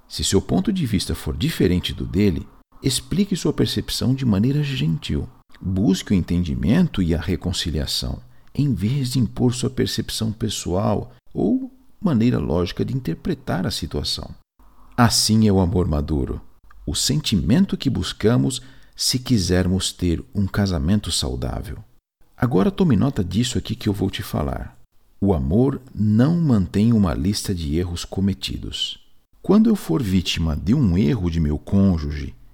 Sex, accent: male, Brazilian